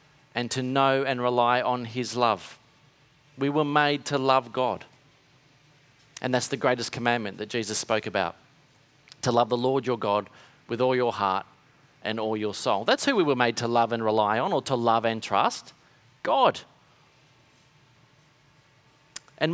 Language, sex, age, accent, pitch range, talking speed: English, male, 40-59, Australian, 125-150 Hz, 165 wpm